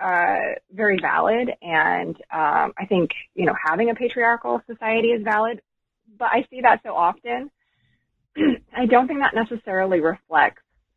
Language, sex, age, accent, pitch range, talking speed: English, female, 20-39, American, 165-215 Hz, 150 wpm